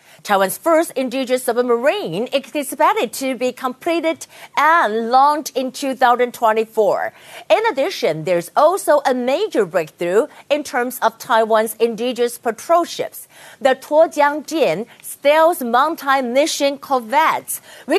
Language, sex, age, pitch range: Chinese, female, 50-69, 230-300 Hz